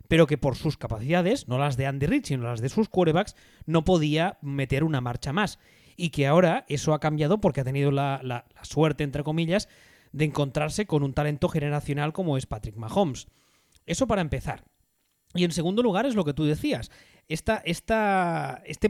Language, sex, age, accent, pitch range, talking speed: Spanish, male, 20-39, Spanish, 140-180 Hz, 185 wpm